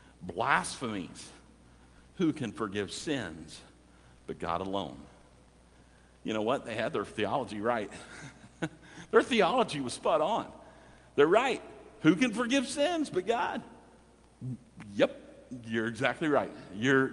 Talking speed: 120 wpm